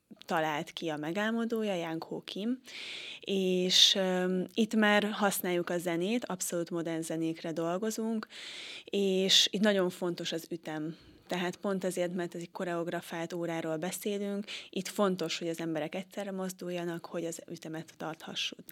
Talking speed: 140 wpm